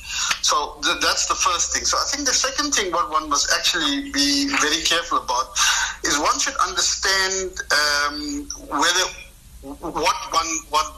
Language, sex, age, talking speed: English, male, 50-69, 160 wpm